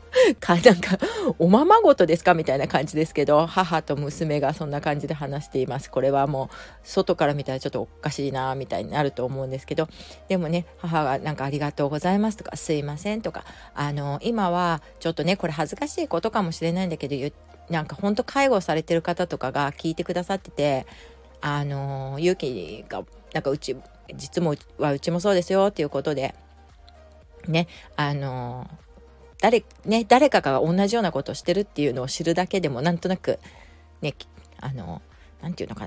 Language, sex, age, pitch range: Japanese, female, 30-49, 145-185 Hz